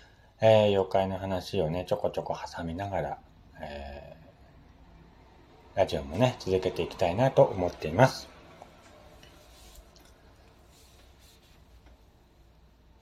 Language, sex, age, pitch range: Japanese, male, 40-59, 85-105 Hz